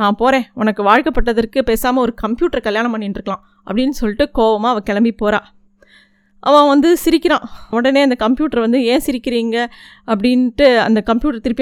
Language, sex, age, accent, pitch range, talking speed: Tamil, female, 20-39, native, 215-265 Hz, 145 wpm